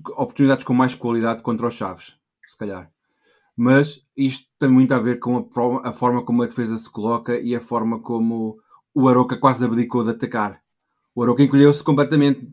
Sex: male